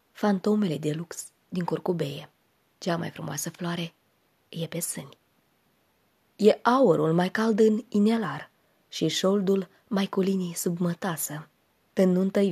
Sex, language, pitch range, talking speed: female, Romanian, 170-210 Hz, 125 wpm